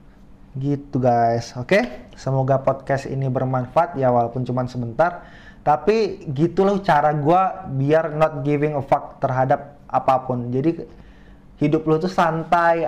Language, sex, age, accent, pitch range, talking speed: Indonesian, male, 20-39, native, 135-175 Hz, 135 wpm